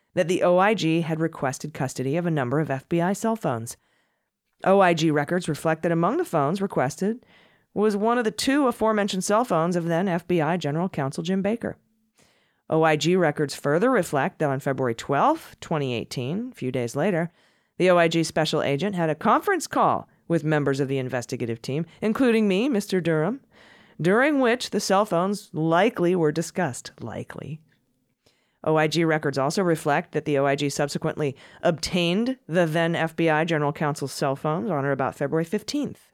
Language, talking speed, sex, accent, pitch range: English, 160 wpm, female, American, 145-200 Hz